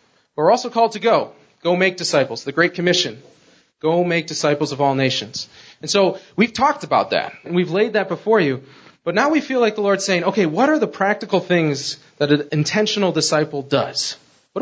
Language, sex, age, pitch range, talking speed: English, male, 30-49, 145-190 Hz, 200 wpm